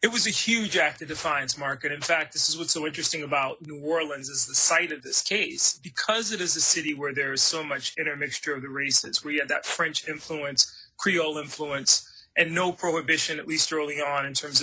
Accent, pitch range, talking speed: American, 145-170 Hz, 230 wpm